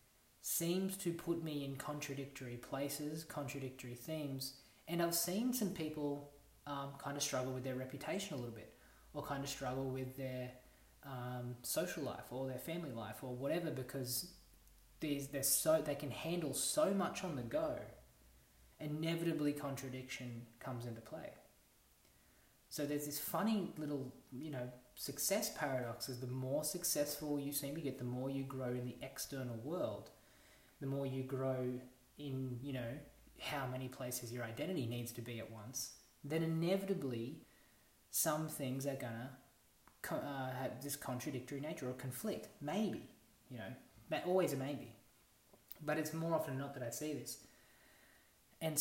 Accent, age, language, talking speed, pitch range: Australian, 20-39, English, 155 wpm, 125-150 Hz